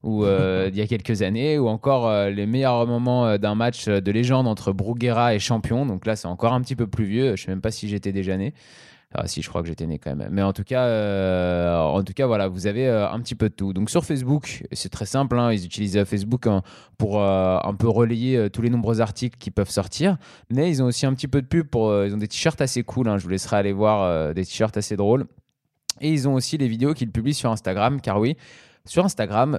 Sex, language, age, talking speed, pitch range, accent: male, French, 20-39, 270 wpm, 100-130 Hz, French